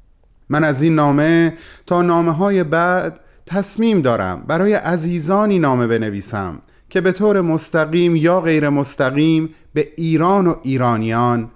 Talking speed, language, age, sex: 130 wpm, Persian, 30-49, male